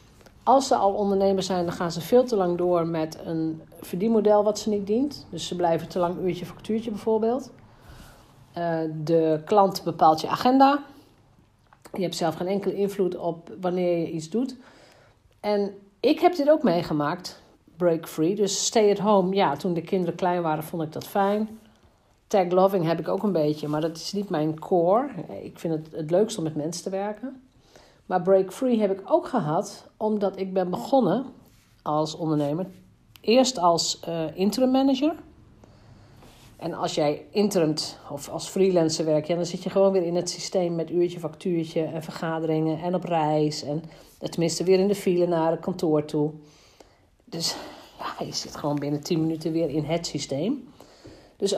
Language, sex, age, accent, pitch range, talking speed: Dutch, female, 50-69, Dutch, 160-205 Hz, 180 wpm